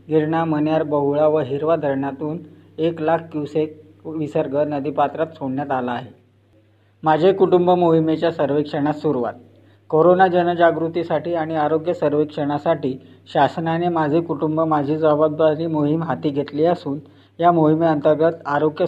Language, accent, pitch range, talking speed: Marathi, native, 135-160 Hz, 115 wpm